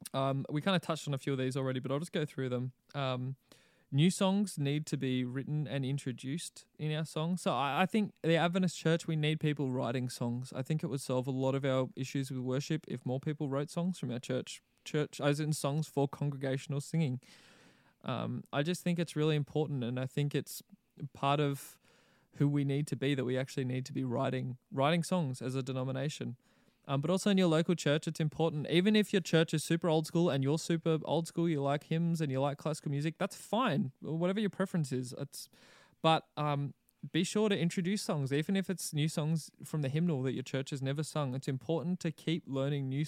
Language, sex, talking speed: English, male, 225 wpm